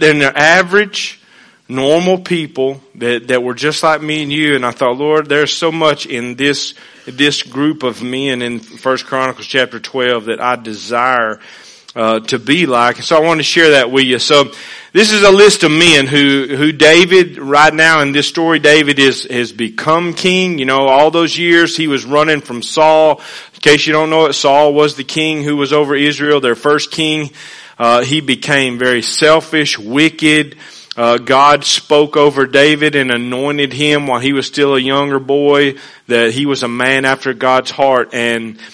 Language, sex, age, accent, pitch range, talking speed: English, male, 40-59, American, 125-150 Hz, 190 wpm